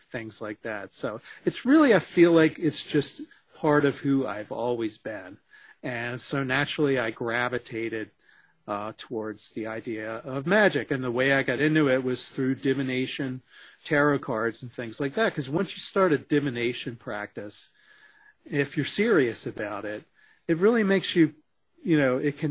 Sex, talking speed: male, 170 wpm